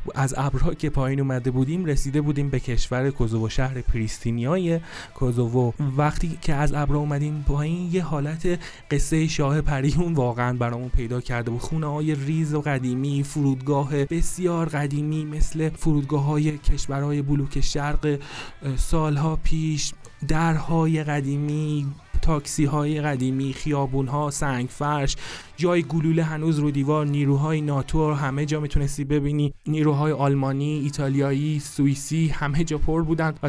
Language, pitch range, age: Persian, 140-155 Hz, 30-49